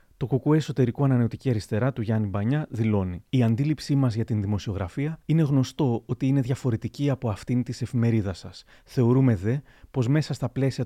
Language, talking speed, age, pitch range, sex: Greek, 170 wpm, 30-49, 110-135 Hz, male